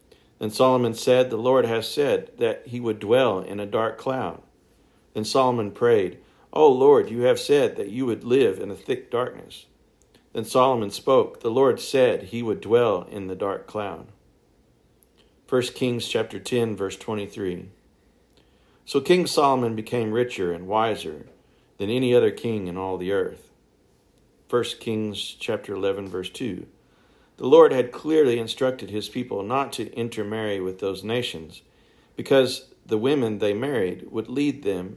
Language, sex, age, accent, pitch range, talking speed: English, male, 50-69, American, 105-140 Hz, 155 wpm